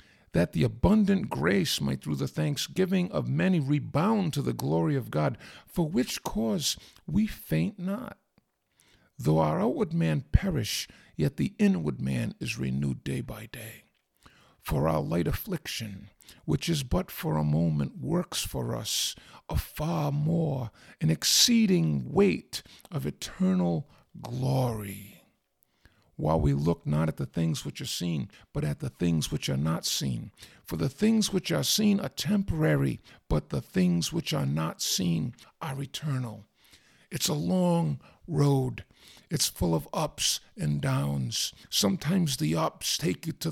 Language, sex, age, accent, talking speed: English, male, 50-69, American, 150 wpm